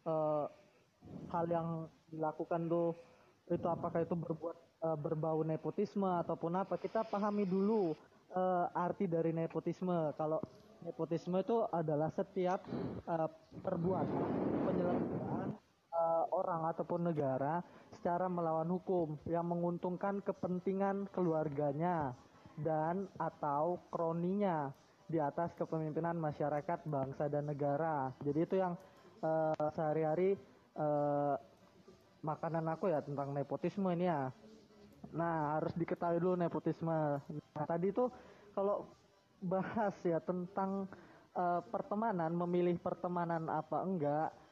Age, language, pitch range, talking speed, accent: 20-39, Indonesian, 155-185 Hz, 100 wpm, native